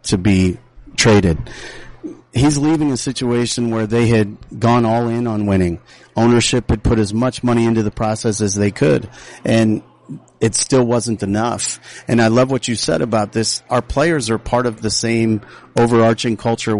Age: 40-59